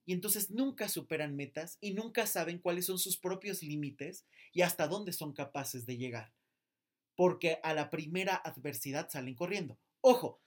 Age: 30-49